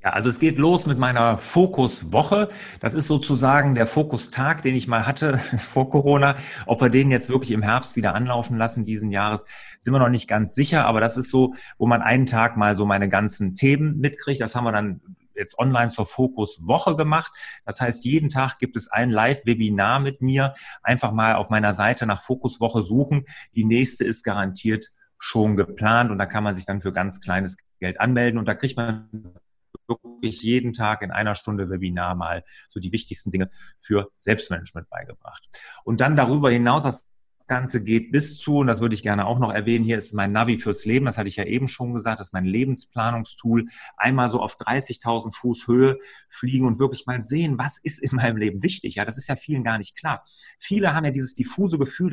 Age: 30-49